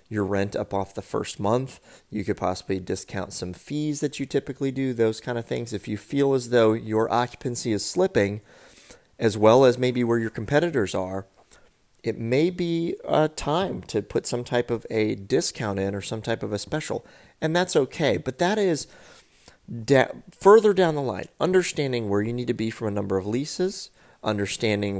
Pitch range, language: 100-135 Hz, English